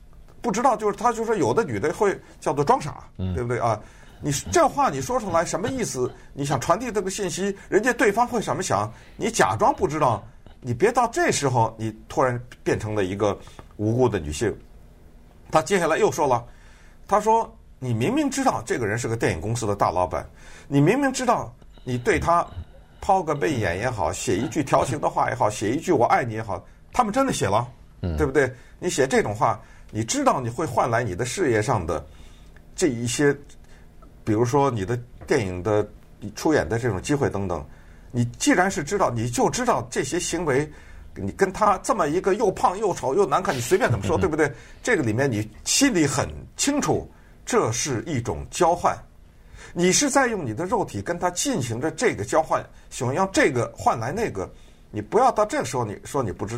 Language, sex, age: Chinese, male, 50-69